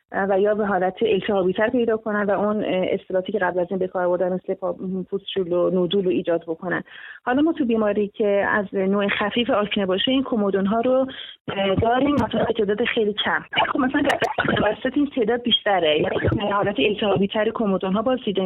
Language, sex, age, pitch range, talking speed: Persian, female, 30-49, 195-230 Hz, 190 wpm